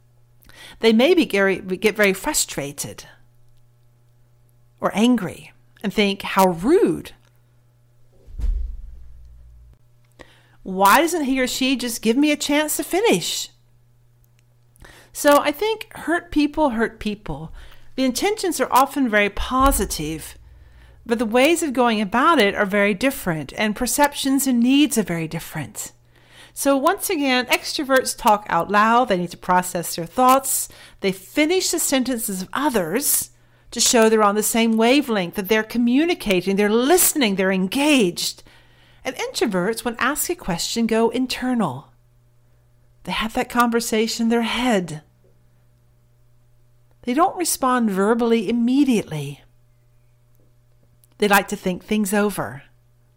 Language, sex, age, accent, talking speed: English, female, 40-59, American, 125 wpm